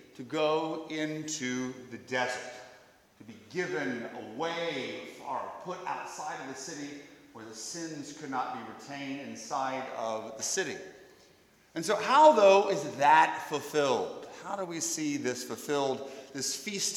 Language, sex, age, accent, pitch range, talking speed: English, male, 40-59, American, 135-195 Hz, 145 wpm